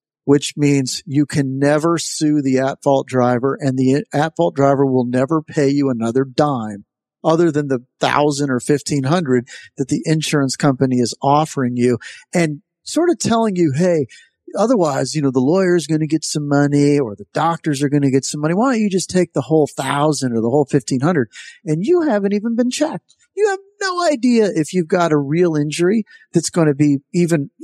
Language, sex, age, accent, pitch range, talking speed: English, male, 50-69, American, 130-170 Hz, 205 wpm